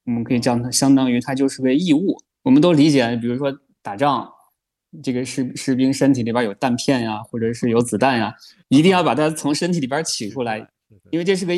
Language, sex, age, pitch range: Chinese, male, 20-39, 120-155 Hz